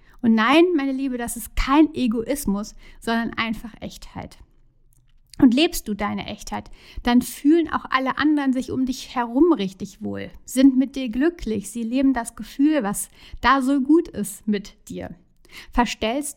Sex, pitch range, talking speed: female, 210-270 Hz, 160 wpm